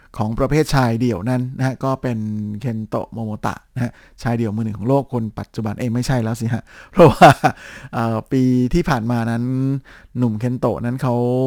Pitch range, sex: 110-135 Hz, male